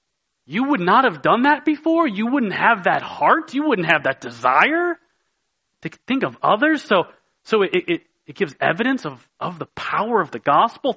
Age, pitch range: 30-49, 170-250 Hz